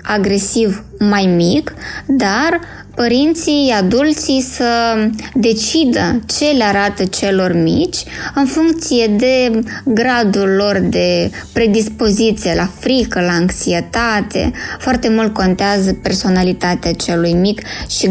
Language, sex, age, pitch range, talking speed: Romanian, female, 20-39, 195-245 Hz, 100 wpm